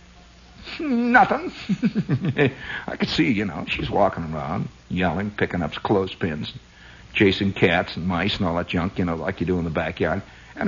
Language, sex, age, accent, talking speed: English, male, 60-79, American, 170 wpm